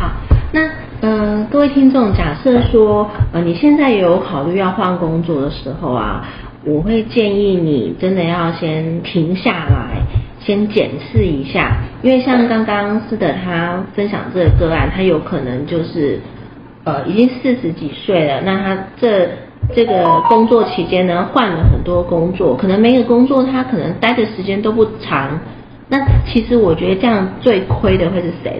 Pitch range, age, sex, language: 170-230 Hz, 30-49, female, Chinese